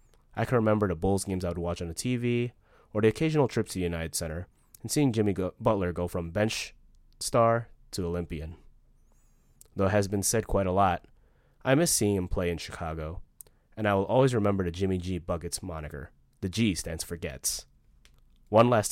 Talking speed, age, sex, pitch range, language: 195 wpm, 20-39, male, 85-110 Hz, English